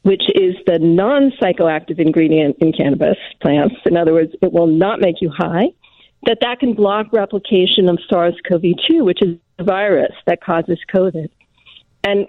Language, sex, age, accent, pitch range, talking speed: English, female, 50-69, American, 180-220 Hz, 155 wpm